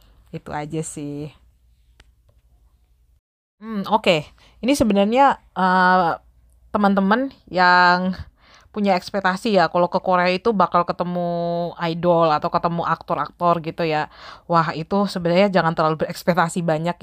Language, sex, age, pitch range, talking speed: Indonesian, female, 20-39, 170-250 Hz, 115 wpm